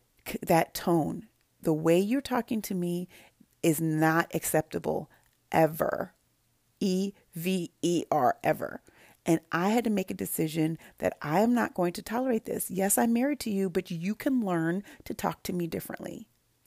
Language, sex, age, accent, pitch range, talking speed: English, female, 30-49, American, 175-215 Hz, 160 wpm